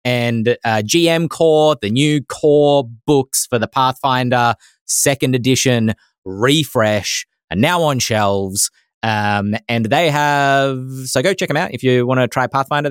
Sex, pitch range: male, 115-150 Hz